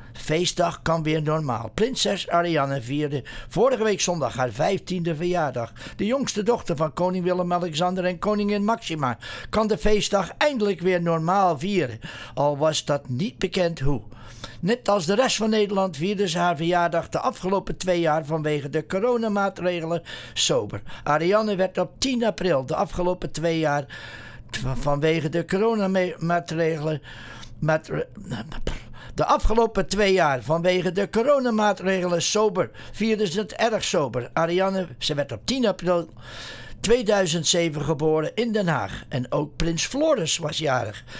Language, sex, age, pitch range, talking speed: English, male, 60-79, 150-200 Hz, 145 wpm